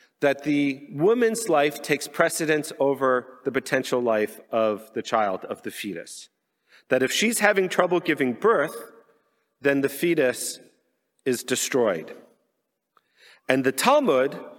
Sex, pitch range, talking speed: male, 130-180 Hz, 130 wpm